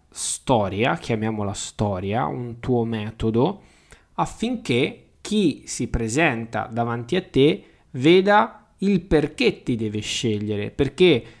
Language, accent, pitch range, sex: Italian, native, 115-160 Hz, male